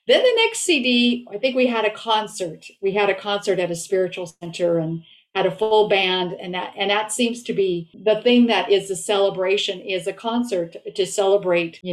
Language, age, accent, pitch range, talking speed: English, 50-69, American, 180-220 Hz, 210 wpm